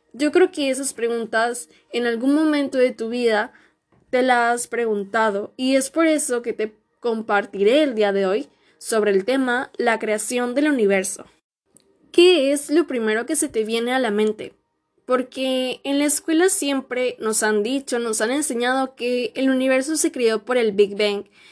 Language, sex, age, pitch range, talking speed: Spanish, female, 10-29, 220-275 Hz, 180 wpm